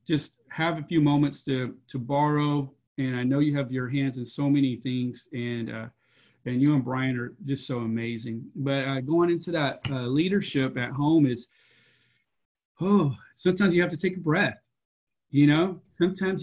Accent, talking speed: American, 180 wpm